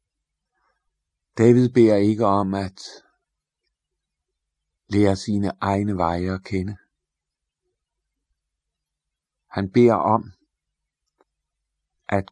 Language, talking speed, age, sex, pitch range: Danish, 75 wpm, 50-69, male, 75-110 Hz